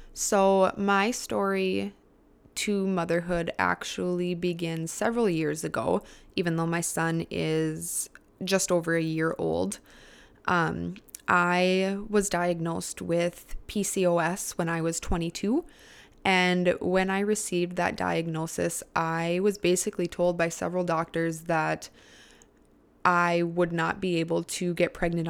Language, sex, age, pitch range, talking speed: English, female, 20-39, 165-190 Hz, 125 wpm